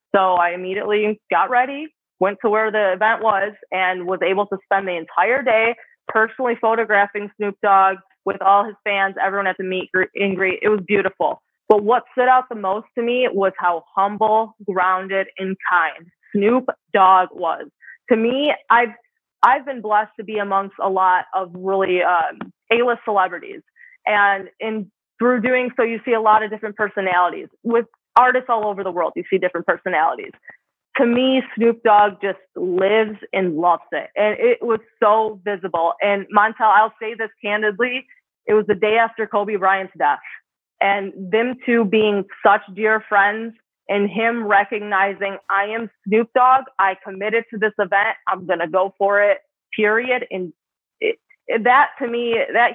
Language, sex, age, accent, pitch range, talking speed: English, female, 20-39, American, 195-230 Hz, 170 wpm